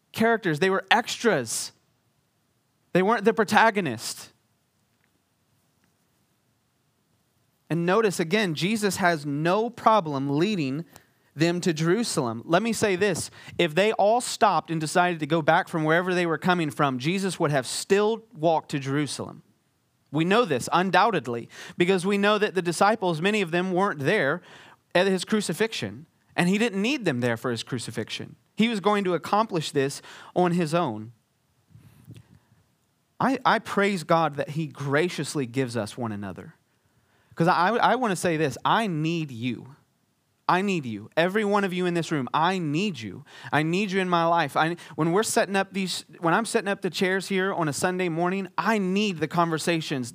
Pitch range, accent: 140-195 Hz, American